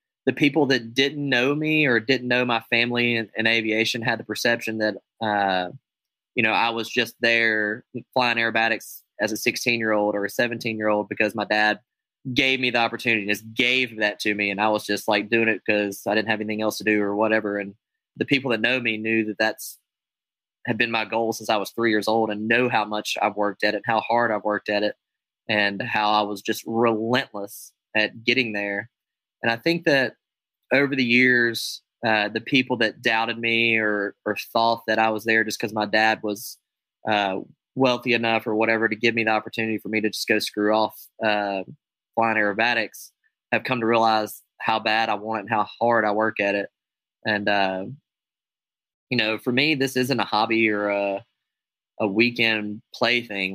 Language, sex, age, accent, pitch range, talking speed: English, male, 20-39, American, 105-120 Hz, 210 wpm